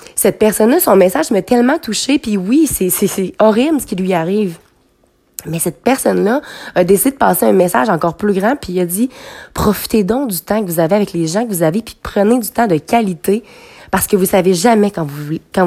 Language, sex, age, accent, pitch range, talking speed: French, female, 20-39, Canadian, 180-240 Hz, 240 wpm